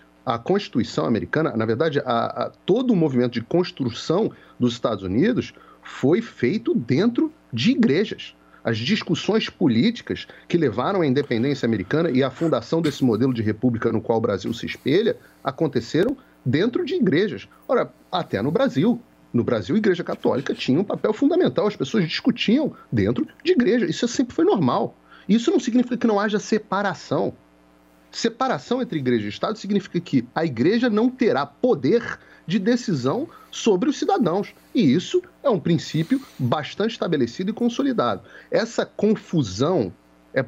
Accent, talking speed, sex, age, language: Brazilian, 155 wpm, male, 40-59, Portuguese